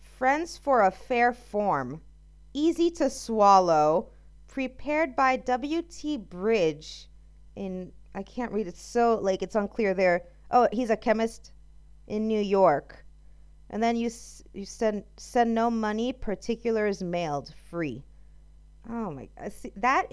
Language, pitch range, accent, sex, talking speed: English, 185-260 Hz, American, female, 135 wpm